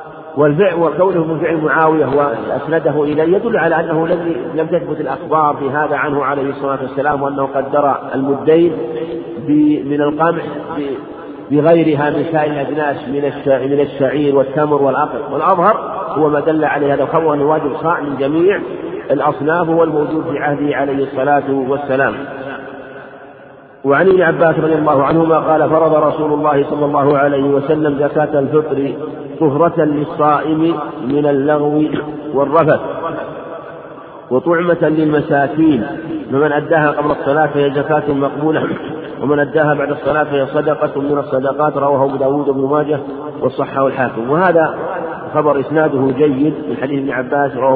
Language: Arabic